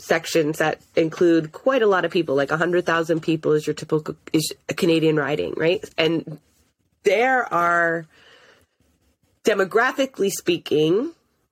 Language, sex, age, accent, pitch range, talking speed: English, female, 30-49, American, 155-190 Hz, 135 wpm